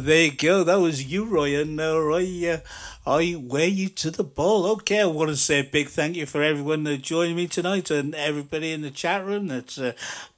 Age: 60-79